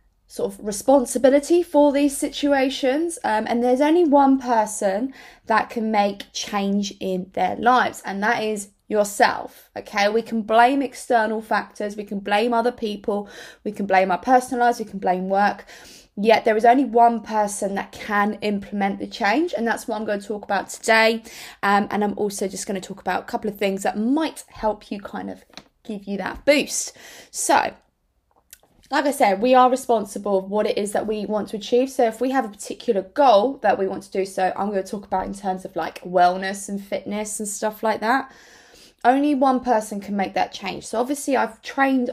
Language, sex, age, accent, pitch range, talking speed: English, female, 20-39, British, 200-250 Hz, 205 wpm